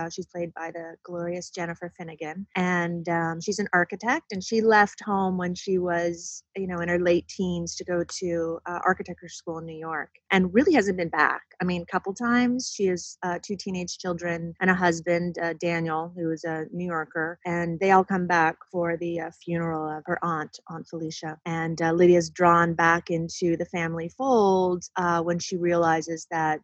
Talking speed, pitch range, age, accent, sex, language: 200 wpm, 165-185 Hz, 30-49, American, female, English